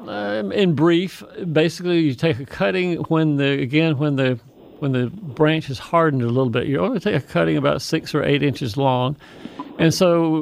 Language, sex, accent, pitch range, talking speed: English, male, American, 135-160 Hz, 195 wpm